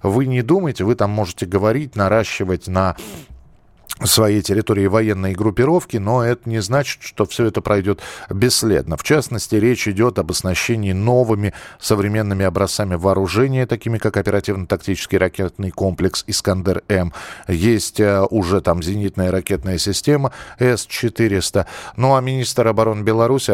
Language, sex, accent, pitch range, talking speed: Russian, male, native, 100-120 Hz, 130 wpm